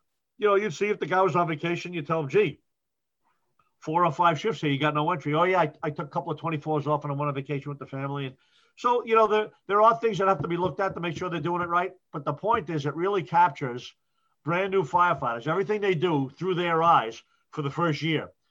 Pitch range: 150-195 Hz